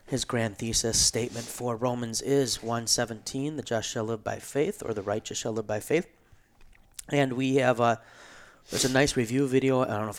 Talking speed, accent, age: 205 wpm, American, 30-49